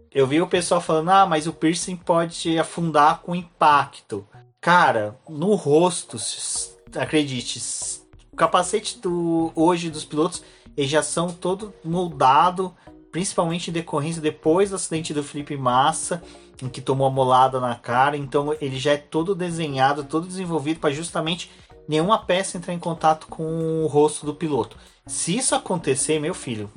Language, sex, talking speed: Portuguese, male, 155 wpm